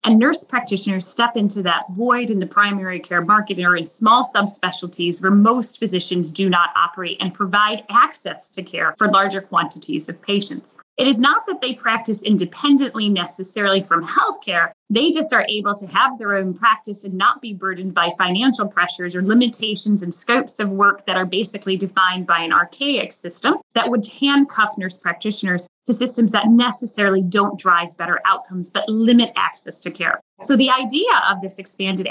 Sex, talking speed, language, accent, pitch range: female, 180 wpm, English, American, 185-245 Hz